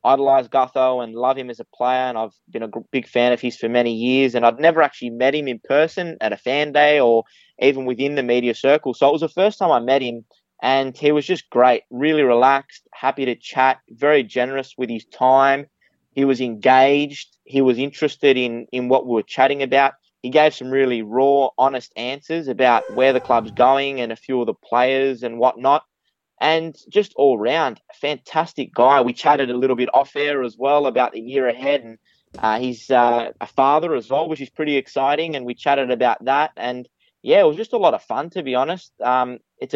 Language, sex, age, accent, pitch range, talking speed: English, male, 20-39, Australian, 125-140 Hz, 220 wpm